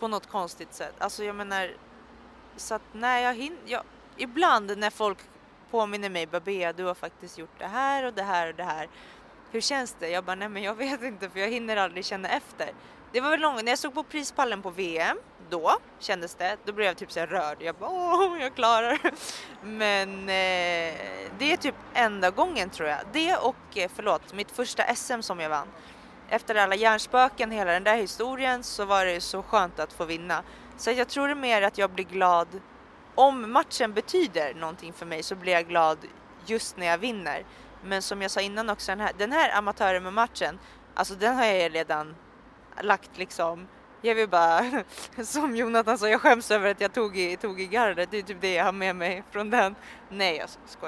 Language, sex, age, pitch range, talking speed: Swedish, female, 20-39, 185-240 Hz, 210 wpm